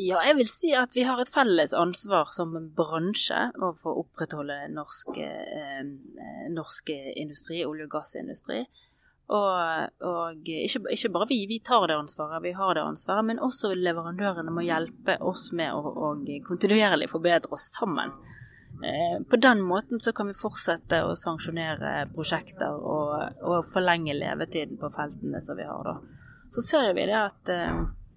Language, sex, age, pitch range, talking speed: English, female, 30-49, 165-230 Hz, 160 wpm